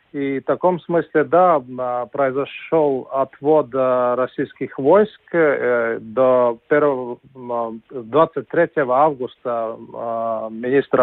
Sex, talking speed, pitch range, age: male, 75 wpm, 125-150 Hz, 40-59